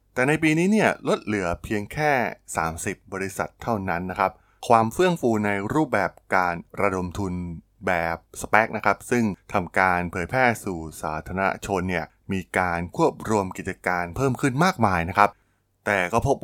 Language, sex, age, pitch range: Thai, male, 20-39, 95-120 Hz